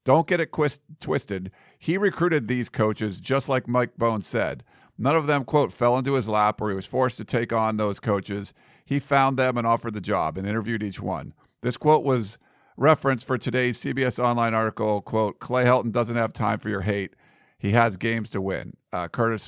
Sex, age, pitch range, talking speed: male, 50-69, 105-135 Hz, 205 wpm